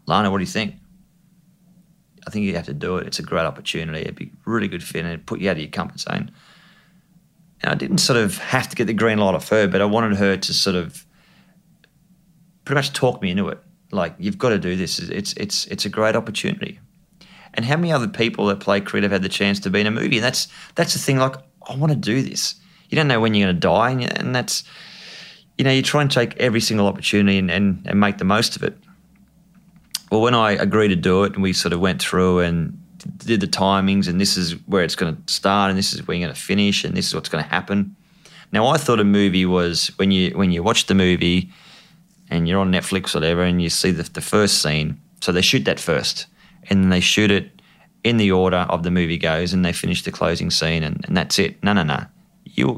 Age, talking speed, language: 30-49, 255 wpm, English